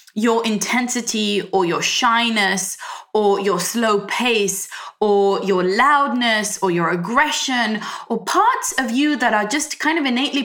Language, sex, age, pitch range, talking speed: English, female, 20-39, 195-265 Hz, 145 wpm